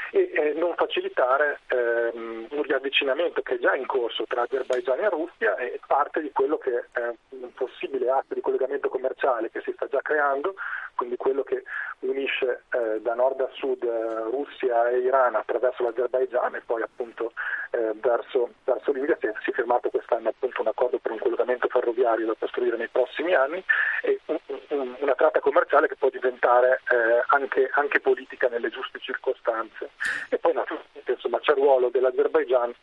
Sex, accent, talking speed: male, native, 170 wpm